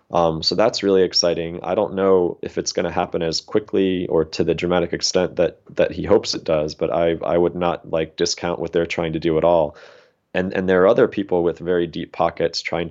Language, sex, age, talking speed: English, male, 20-39, 235 wpm